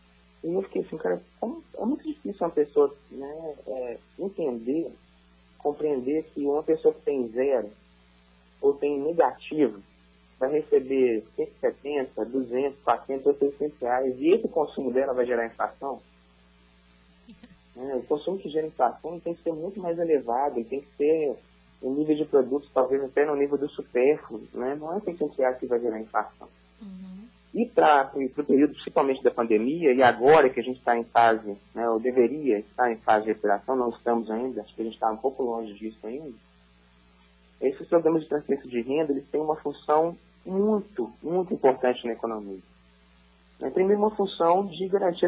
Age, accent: 20-39, Brazilian